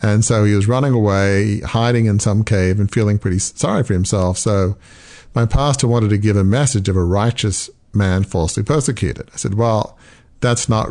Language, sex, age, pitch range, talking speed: English, male, 50-69, 100-115 Hz, 195 wpm